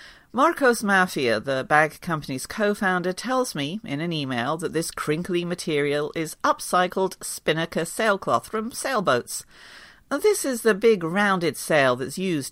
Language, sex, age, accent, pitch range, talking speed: English, female, 40-59, British, 145-205 Hz, 140 wpm